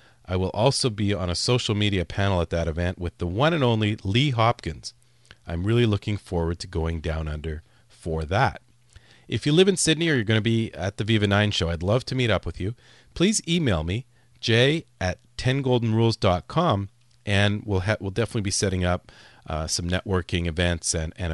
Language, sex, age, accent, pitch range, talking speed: English, male, 40-59, American, 90-115 Hz, 200 wpm